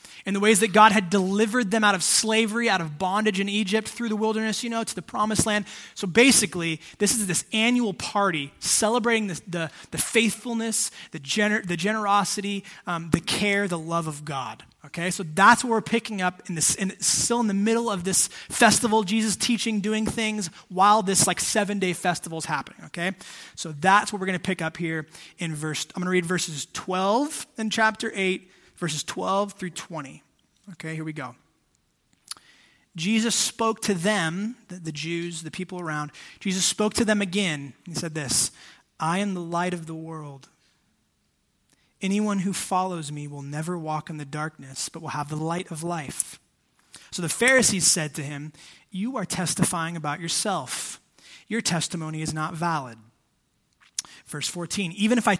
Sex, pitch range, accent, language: male, 160-215 Hz, American, English